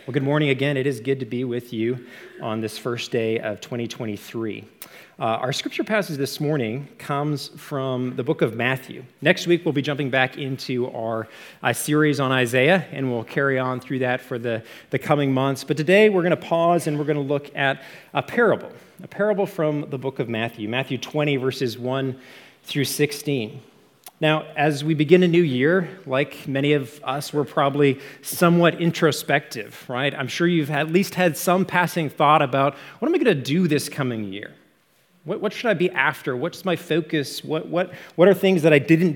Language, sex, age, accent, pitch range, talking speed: English, male, 40-59, American, 130-165 Hz, 200 wpm